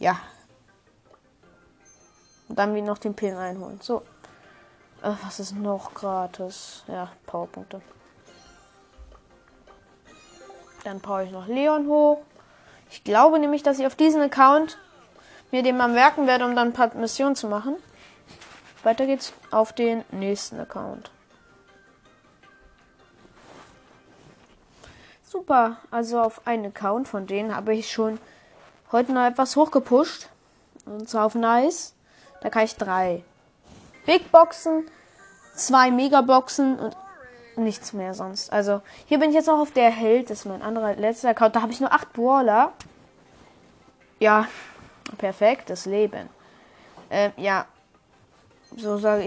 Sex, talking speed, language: female, 130 wpm, German